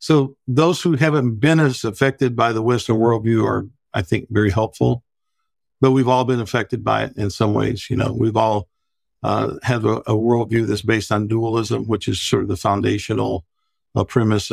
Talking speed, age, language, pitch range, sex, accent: 195 wpm, 50-69, English, 110-135 Hz, male, American